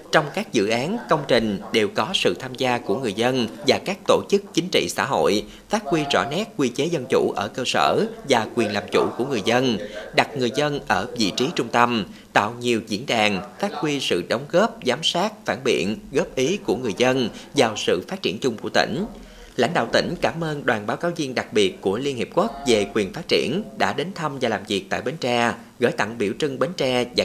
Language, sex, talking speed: Vietnamese, male, 240 wpm